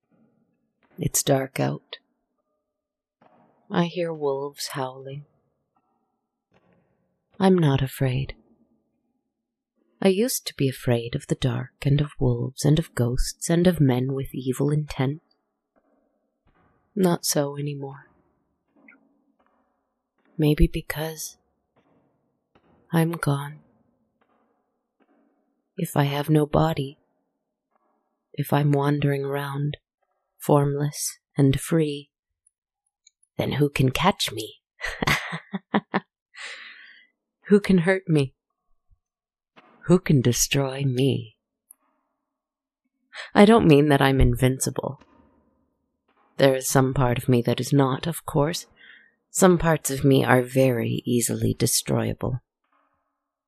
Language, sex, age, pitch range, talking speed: English, female, 30-49, 135-190 Hz, 100 wpm